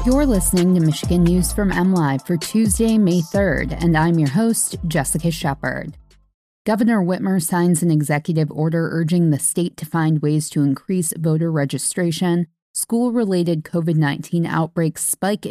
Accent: American